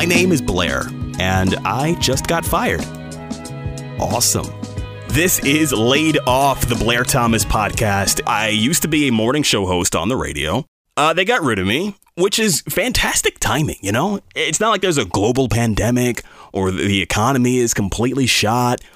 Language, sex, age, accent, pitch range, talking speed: English, male, 30-49, American, 105-145 Hz, 170 wpm